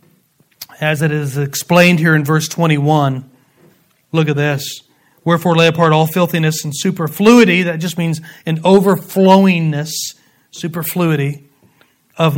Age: 40-59